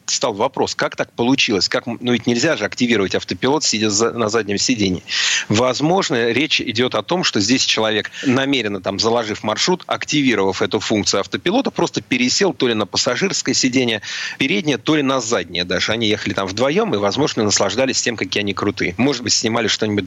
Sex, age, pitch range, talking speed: male, 40-59, 100-125 Hz, 180 wpm